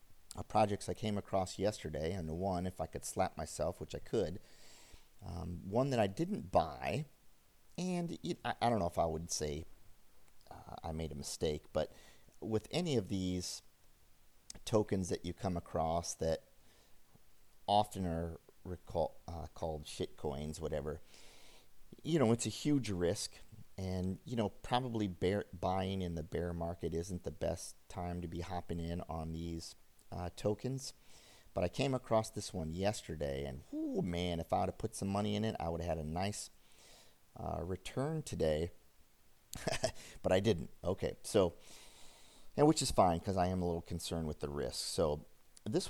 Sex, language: male, English